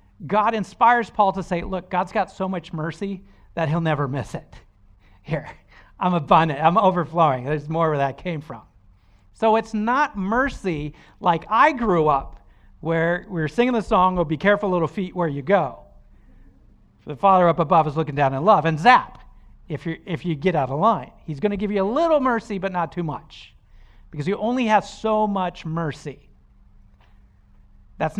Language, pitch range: English, 135-195 Hz